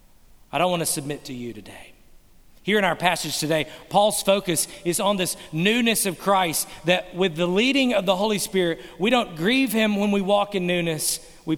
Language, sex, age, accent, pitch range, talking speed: English, male, 40-59, American, 160-205 Hz, 200 wpm